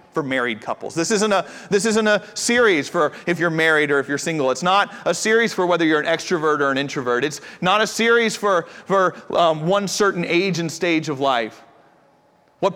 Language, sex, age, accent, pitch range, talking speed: English, male, 40-59, American, 190-250 Hz, 210 wpm